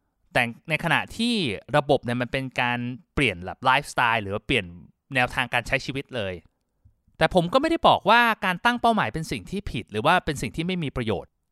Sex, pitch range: male, 125-165 Hz